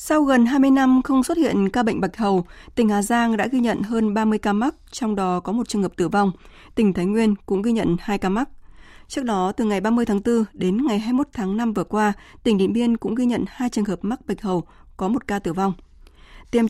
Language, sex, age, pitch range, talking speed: Vietnamese, female, 20-39, 195-235 Hz, 250 wpm